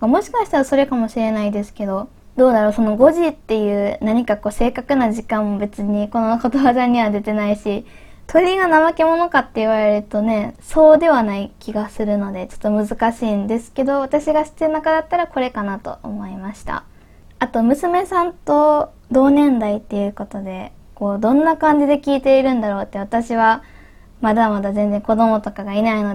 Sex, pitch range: female, 210-275 Hz